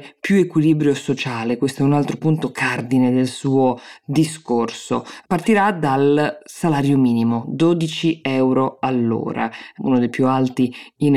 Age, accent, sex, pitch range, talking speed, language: 20-39, native, female, 130-160 Hz, 130 wpm, Italian